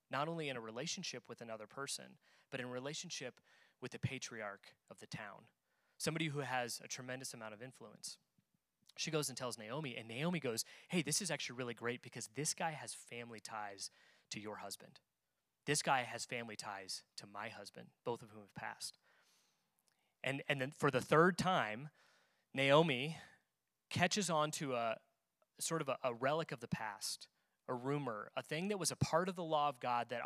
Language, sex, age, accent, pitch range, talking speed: English, male, 20-39, American, 120-155 Hz, 190 wpm